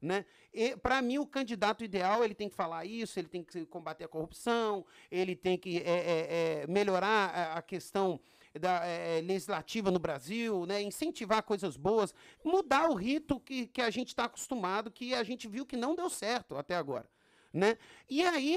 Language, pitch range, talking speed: Portuguese, 195-245 Hz, 165 wpm